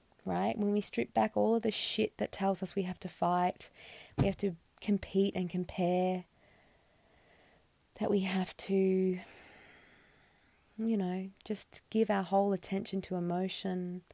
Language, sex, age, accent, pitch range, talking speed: English, female, 20-39, Australian, 165-195 Hz, 150 wpm